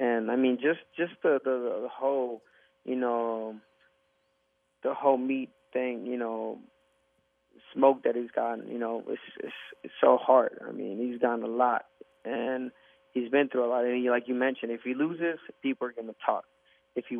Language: English